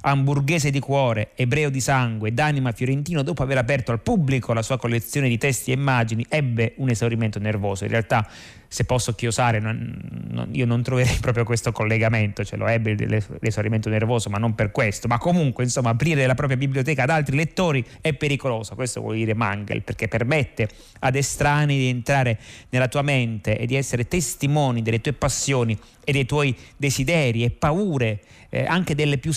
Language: Italian